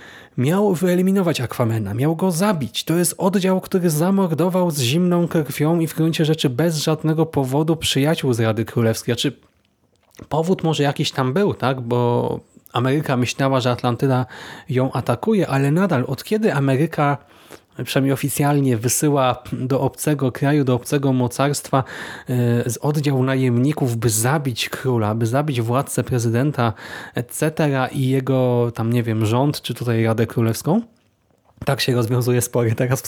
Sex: male